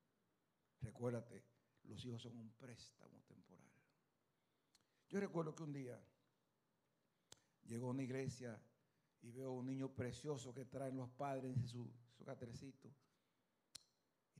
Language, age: Spanish, 60-79